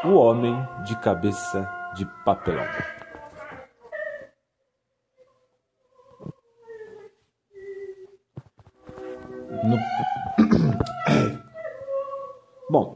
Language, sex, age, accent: Portuguese, male, 40-59, Brazilian